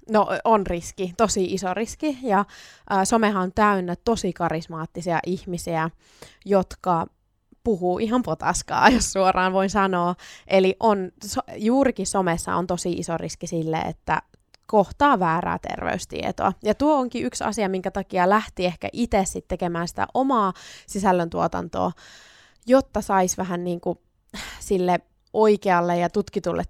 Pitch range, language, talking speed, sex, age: 175-215 Hz, Finnish, 130 wpm, female, 20-39